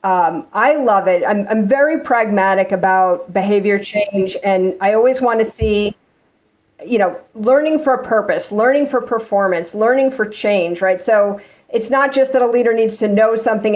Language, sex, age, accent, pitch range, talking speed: English, female, 50-69, American, 195-230 Hz, 175 wpm